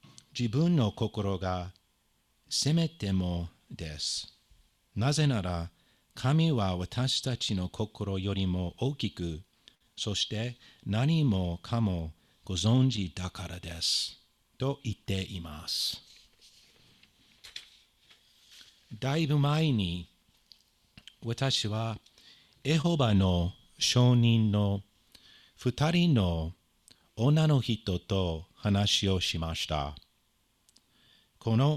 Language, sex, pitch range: Japanese, male, 90-125 Hz